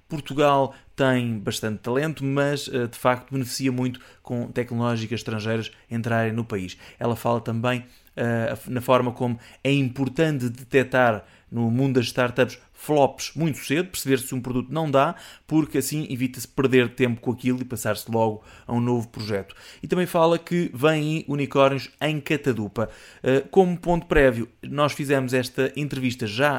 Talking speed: 150 wpm